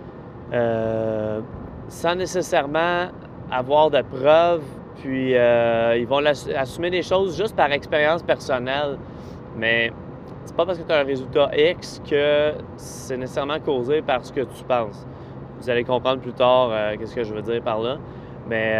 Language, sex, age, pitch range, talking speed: French, male, 20-39, 120-145 Hz, 160 wpm